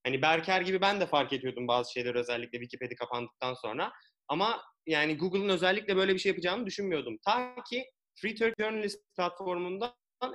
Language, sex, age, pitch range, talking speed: Turkish, male, 30-49, 150-200 Hz, 160 wpm